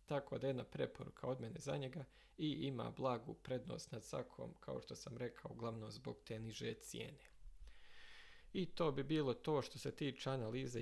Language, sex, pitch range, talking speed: Croatian, male, 120-140 Hz, 170 wpm